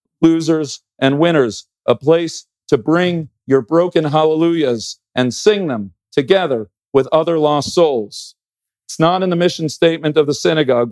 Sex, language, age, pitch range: male, English, 40-59, 120-160 Hz